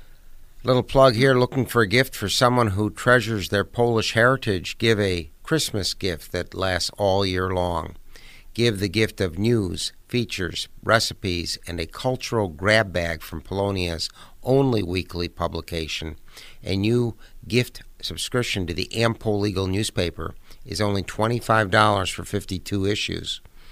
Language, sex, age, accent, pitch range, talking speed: English, male, 60-79, American, 90-110 Hz, 140 wpm